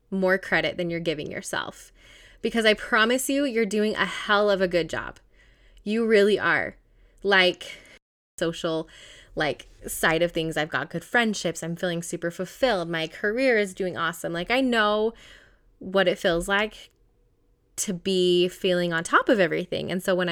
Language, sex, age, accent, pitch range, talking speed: English, female, 20-39, American, 170-240 Hz, 170 wpm